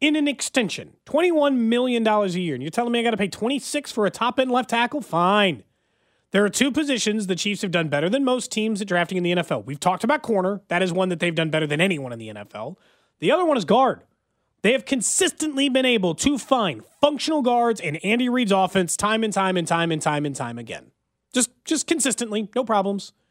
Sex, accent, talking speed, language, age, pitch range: male, American, 225 wpm, English, 30-49, 170-250 Hz